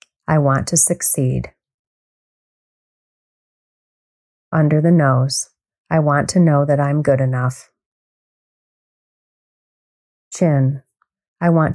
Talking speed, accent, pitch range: 90 wpm, American, 130-160 Hz